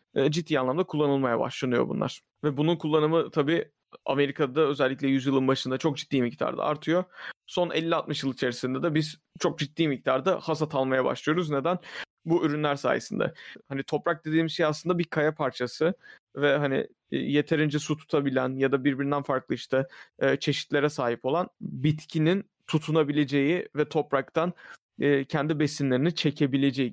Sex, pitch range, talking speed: male, 140-165 Hz, 140 wpm